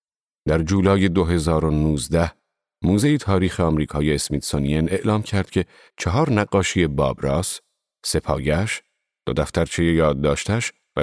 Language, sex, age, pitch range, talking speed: Persian, male, 40-59, 75-95 Hz, 100 wpm